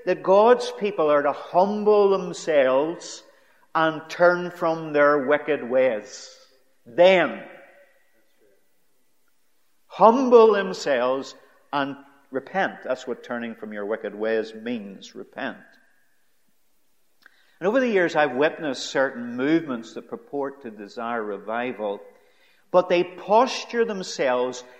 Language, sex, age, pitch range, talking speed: English, male, 50-69, 125-195 Hz, 105 wpm